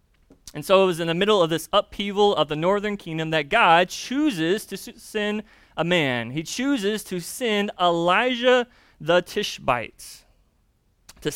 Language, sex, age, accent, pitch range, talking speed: English, male, 20-39, American, 150-215 Hz, 155 wpm